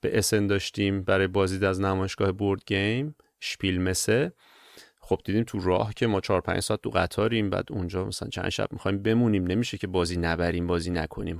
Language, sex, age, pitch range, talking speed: Persian, male, 30-49, 100-125 Hz, 180 wpm